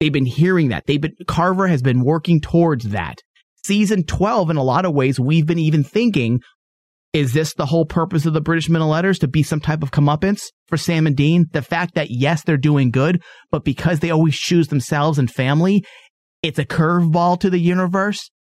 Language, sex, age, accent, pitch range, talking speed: English, male, 30-49, American, 140-180 Hz, 210 wpm